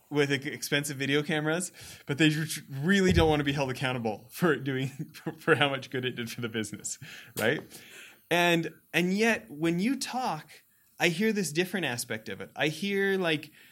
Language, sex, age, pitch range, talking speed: English, male, 20-39, 115-155 Hz, 180 wpm